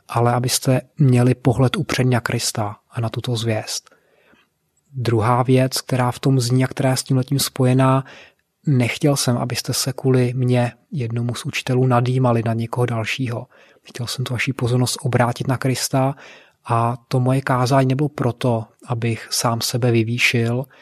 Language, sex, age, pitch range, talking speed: Czech, male, 30-49, 120-130 Hz, 160 wpm